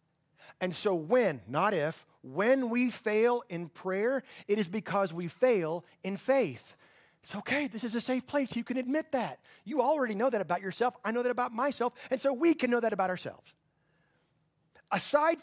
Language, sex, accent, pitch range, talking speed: English, male, American, 180-255 Hz, 185 wpm